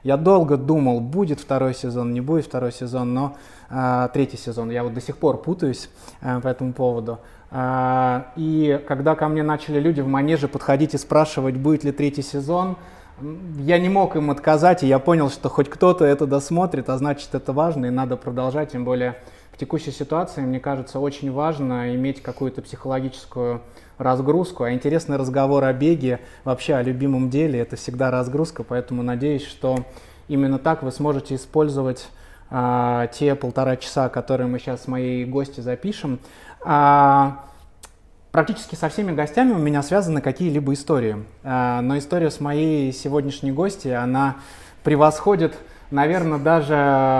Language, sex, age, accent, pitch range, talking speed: Russian, male, 20-39, native, 125-150 Hz, 155 wpm